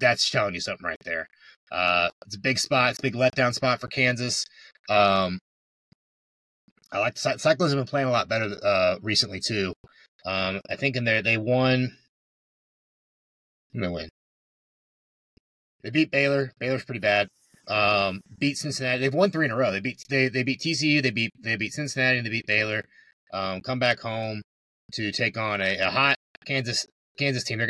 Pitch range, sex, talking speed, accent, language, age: 100-135 Hz, male, 185 wpm, American, English, 30-49